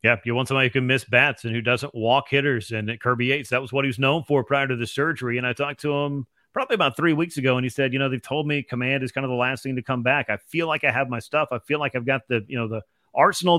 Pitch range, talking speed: 125-150 Hz, 320 wpm